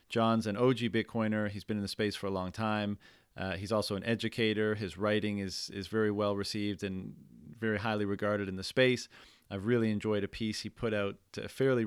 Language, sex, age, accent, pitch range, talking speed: English, male, 30-49, American, 100-110 Hz, 205 wpm